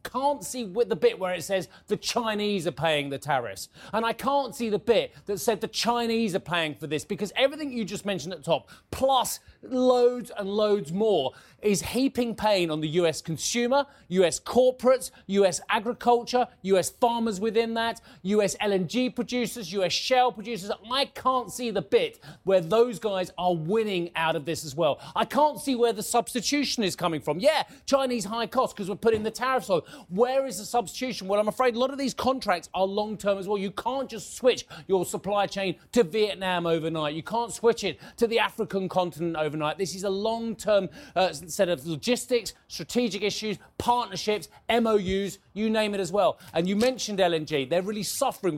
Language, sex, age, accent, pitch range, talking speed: English, male, 30-49, British, 180-240 Hz, 195 wpm